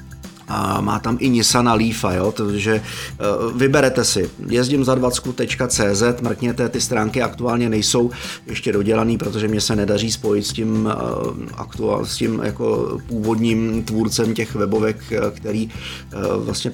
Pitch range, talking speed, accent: 105-115 Hz, 135 wpm, native